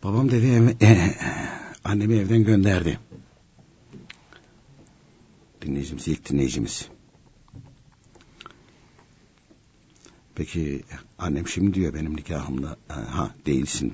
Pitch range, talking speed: 85-120 Hz, 70 wpm